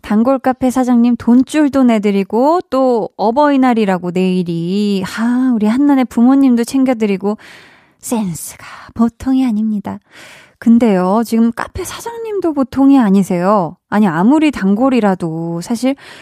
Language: Korean